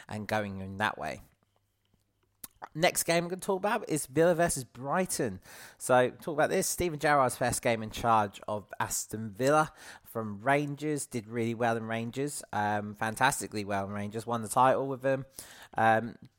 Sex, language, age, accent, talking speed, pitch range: male, English, 30-49, British, 175 wpm, 105-130 Hz